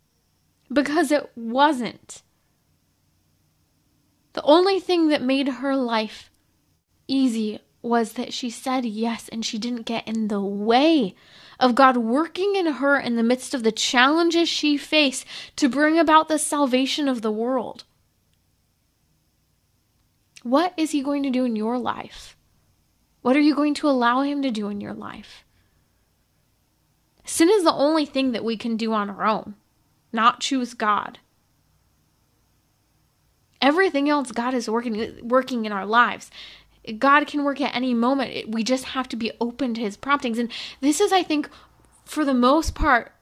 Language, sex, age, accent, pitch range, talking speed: English, female, 20-39, American, 225-285 Hz, 155 wpm